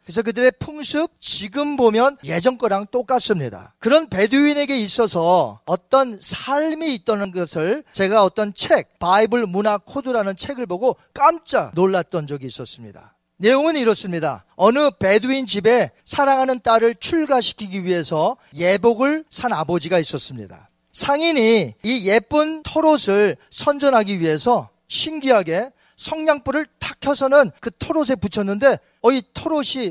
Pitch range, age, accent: 185-280 Hz, 40-59, native